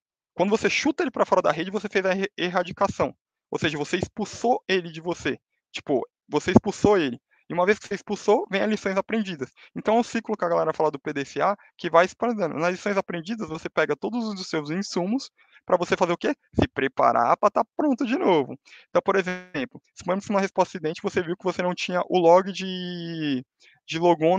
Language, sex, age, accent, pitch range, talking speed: Portuguese, male, 20-39, Brazilian, 140-195 Hz, 215 wpm